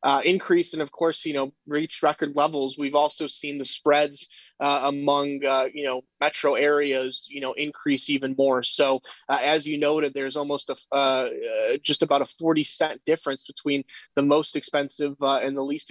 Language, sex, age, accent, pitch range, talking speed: English, male, 20-39, American, 135-150 Hz, 190 wpm